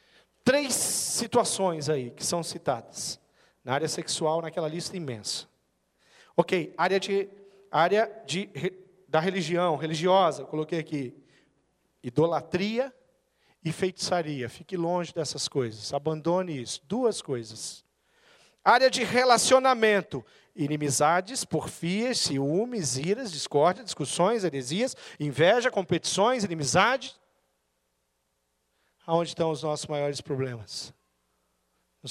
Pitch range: 135-195 Hz